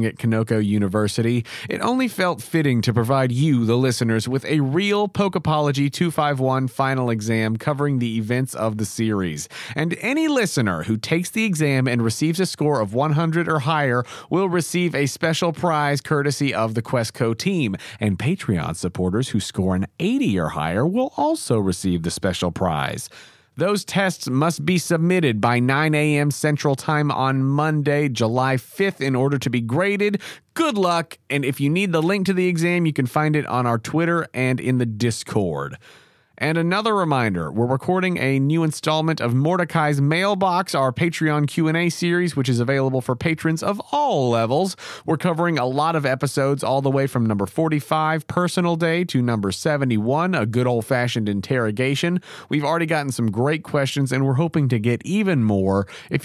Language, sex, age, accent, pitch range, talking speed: English, male, 40-59, American, 120-170 Hz, 175 wpm